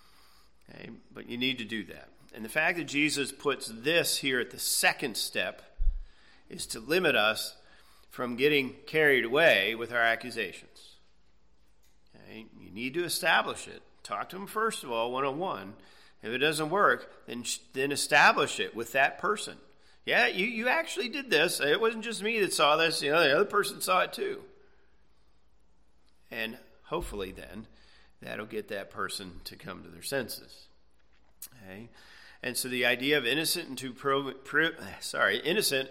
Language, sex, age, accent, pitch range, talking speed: English, male, 40-59, American, 110-150 Hz, 155 wpm